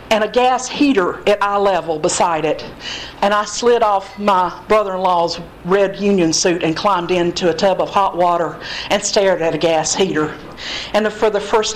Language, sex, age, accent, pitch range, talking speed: English, female, 50-69, American, 185-240 Hz, 185 wpm